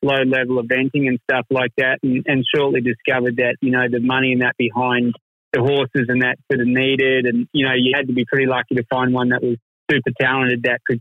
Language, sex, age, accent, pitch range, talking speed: English, male, 30-49, Australian, 125-140 Hz, 240 wpm